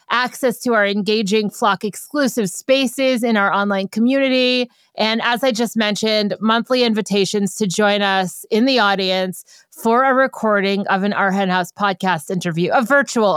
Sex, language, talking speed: female, English, 160 wpm